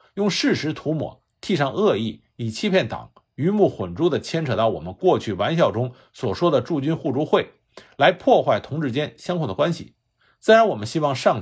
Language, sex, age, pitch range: Chinese, male, 50-69, 115-175 Hz